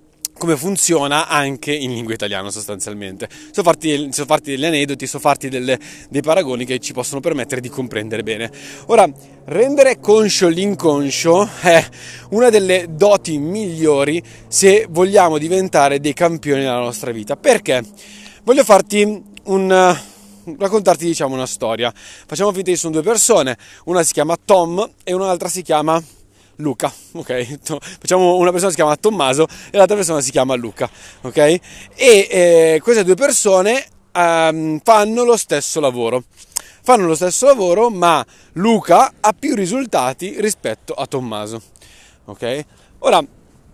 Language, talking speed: Italian, 140 wpm